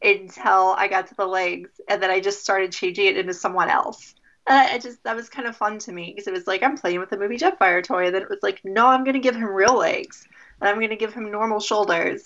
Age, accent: 20-39, American